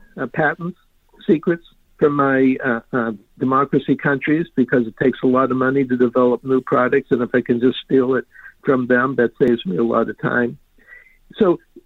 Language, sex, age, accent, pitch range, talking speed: English, male, 60-79, American, 125-150 Hz, 185 wpm